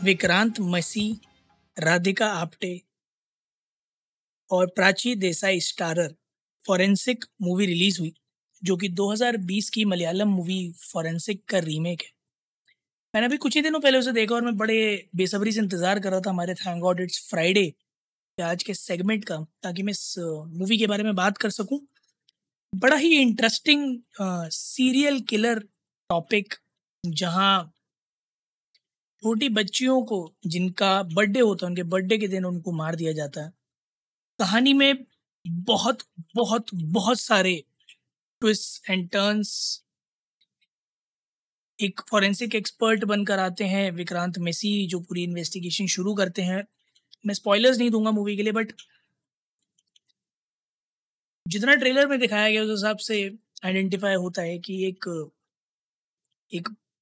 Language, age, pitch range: Hindi, 20-39, 180-220 Hz